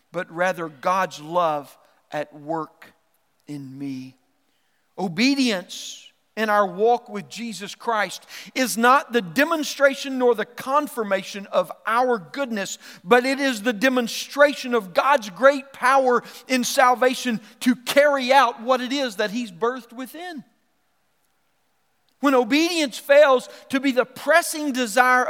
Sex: male